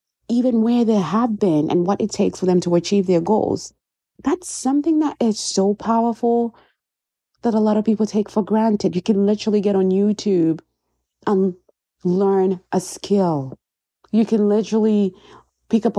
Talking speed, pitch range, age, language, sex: 165 wpm, 180-225 Hz, 30-49, English, female